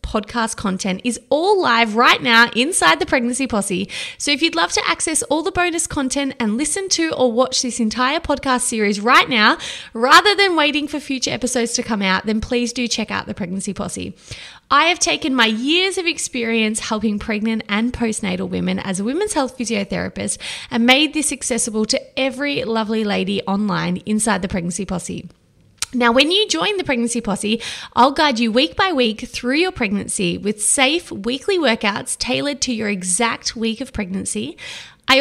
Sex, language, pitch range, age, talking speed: female, English, 220-300 Hz, 20-39, 180 wpm